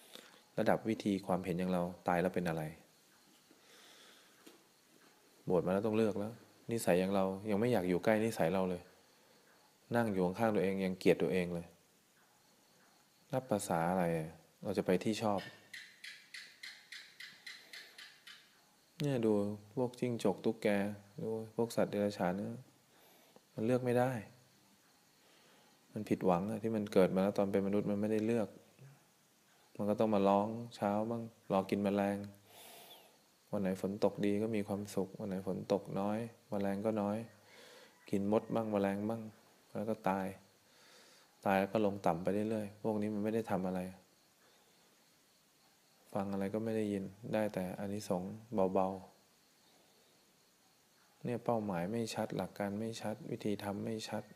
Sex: male